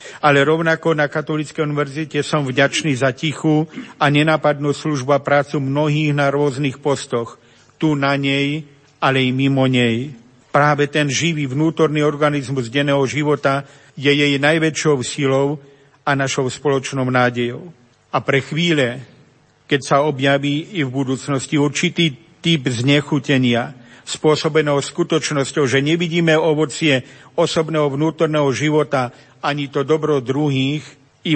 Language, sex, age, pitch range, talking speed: Slovak, male, 50-69, 135-155 Hz, 125 wpm